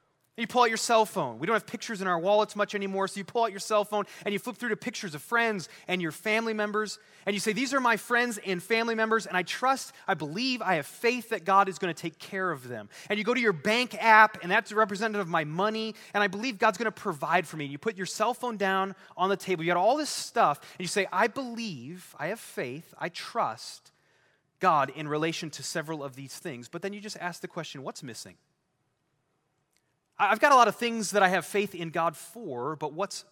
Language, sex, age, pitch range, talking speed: English, male, 30-49, 175-225 Hz, 250 wpm